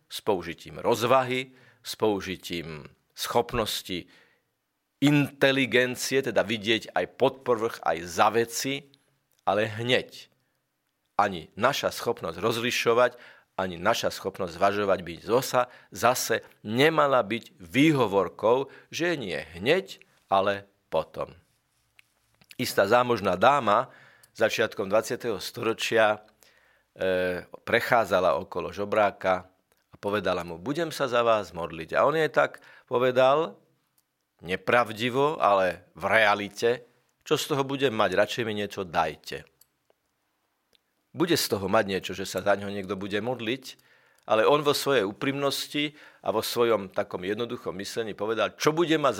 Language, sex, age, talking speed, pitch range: Slovak, male, 50-69, 120 wpm, 100-130 Hz